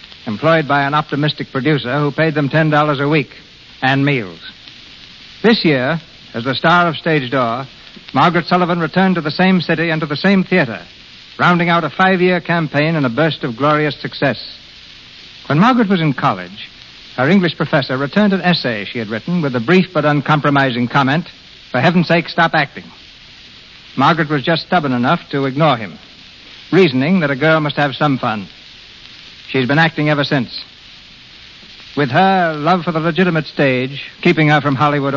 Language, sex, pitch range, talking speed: English, male, 135-170 Hz, 170 wpm